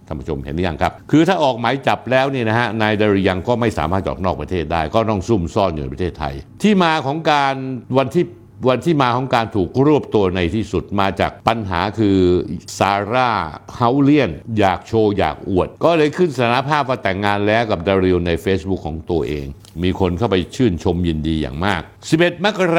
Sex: male